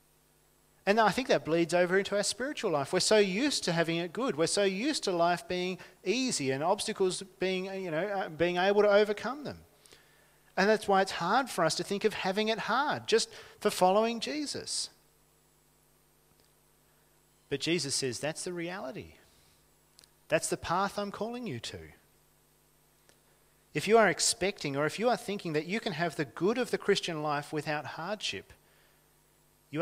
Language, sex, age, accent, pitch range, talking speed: English, male, 40-59, Australian, 155-215 Hz, 170 wpm